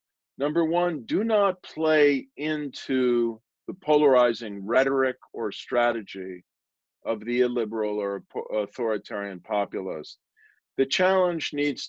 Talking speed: 100 wpm